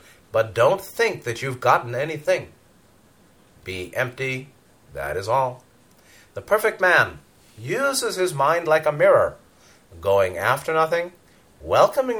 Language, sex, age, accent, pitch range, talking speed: English, male, 40-59, American, 100-150 Hz, 125 wpm